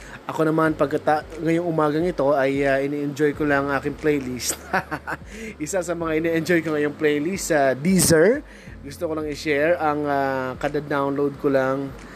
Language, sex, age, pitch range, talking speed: Filipino, male, 20-39, 120-155 Hz, 155 wpm